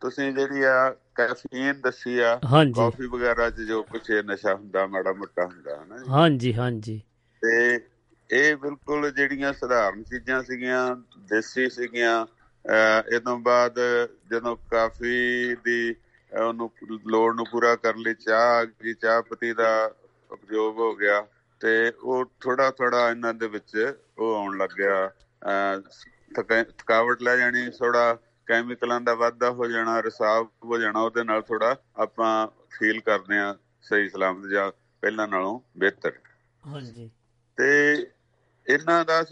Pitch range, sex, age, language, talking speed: 110-125 Hz, male, 50-69, Punjabi, 90 wpm